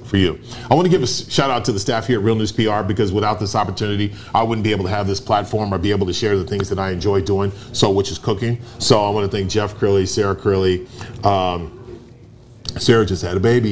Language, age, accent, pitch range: English, 30-49, American, 100-125 Hz